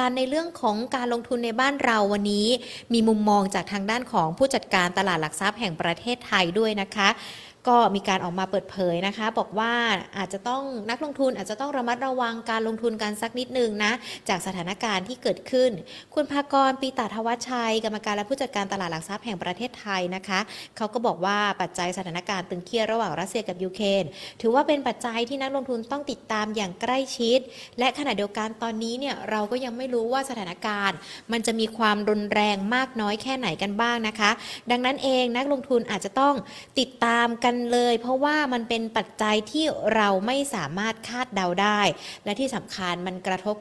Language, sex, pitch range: Thai, female, 195-245 Hz